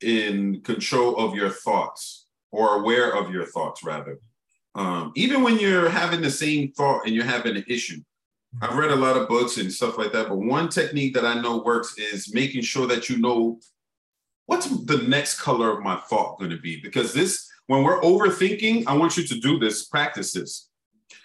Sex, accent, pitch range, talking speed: male, American, 115-160 Hz, 195 wpm